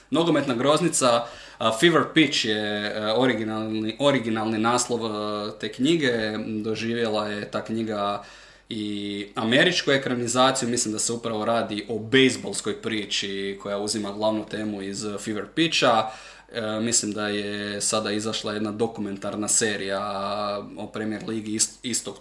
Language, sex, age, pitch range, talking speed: Croatian, male, 20-39, 105-120 Hz, 120 wpm